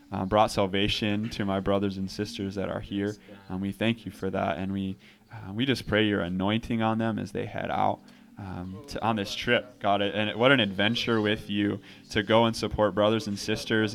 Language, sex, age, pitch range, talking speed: English, male, 20-39, 100-110 Hz, 210 wpm